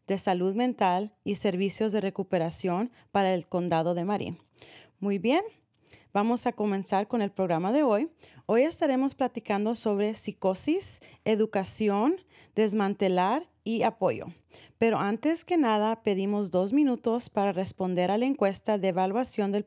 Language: Spanish